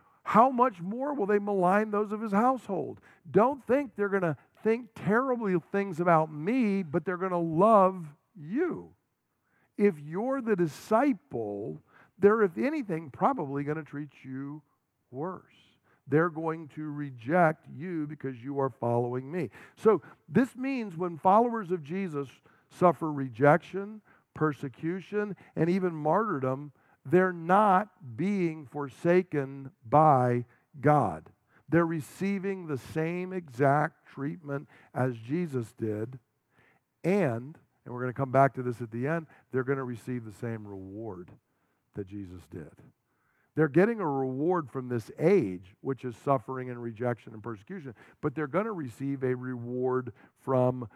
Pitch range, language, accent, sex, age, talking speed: 130-190 Hz, English, American, male, 50-69, 140 wpm